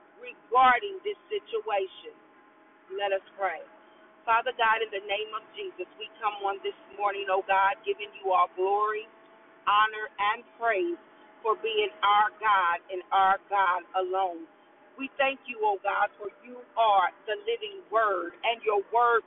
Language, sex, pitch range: English, female, 220-345 Hz